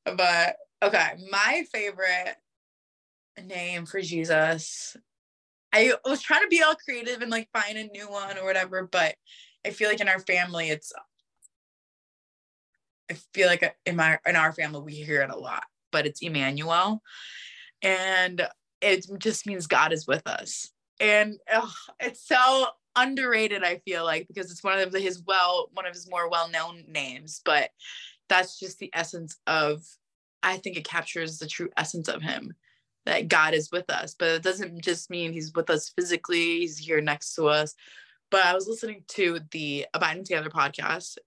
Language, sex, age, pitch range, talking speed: English, female, 20-39, 160-195 Hz, 170 wpm